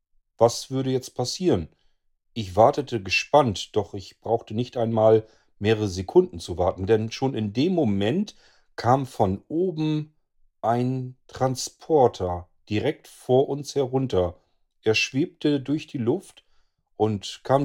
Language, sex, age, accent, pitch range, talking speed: German, male, 40-59, German, 95-125 Hz, 125 wpm